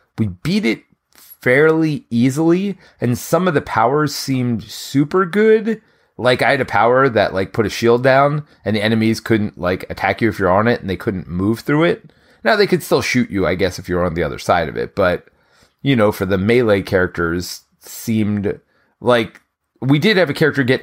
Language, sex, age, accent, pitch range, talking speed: English, male, 30-49, American, 100-140 Hz, 210 wpm